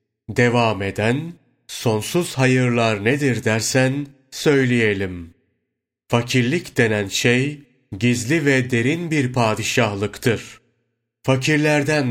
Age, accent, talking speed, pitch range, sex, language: 40-59, native, 80 wpm, 110-130 Hz, male, Turkish